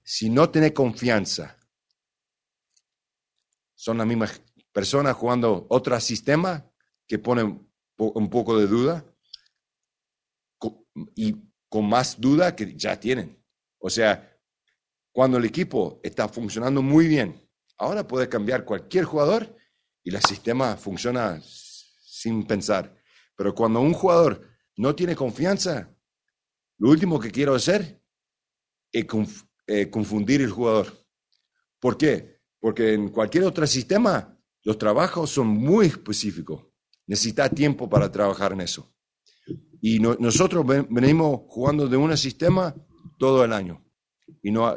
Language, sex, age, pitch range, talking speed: English, male, 50-69, 110-150 Hz, 125 wpm